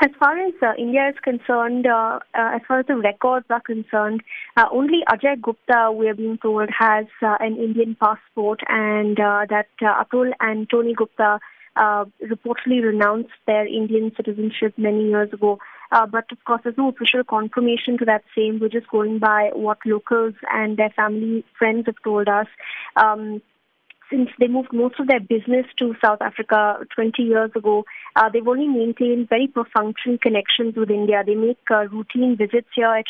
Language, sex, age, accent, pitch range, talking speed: English, female, 20-39, Indian, 215-240 Hz, 180 wpm